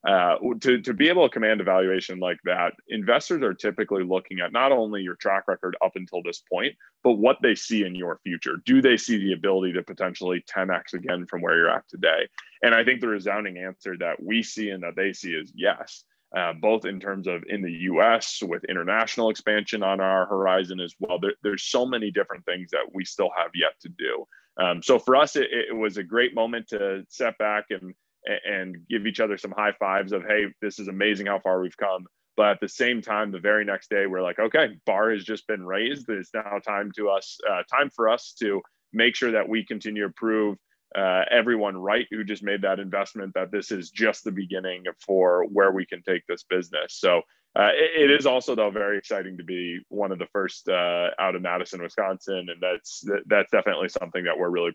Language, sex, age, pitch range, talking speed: English, male, 20-39, 95-110 Hz, 220 wpm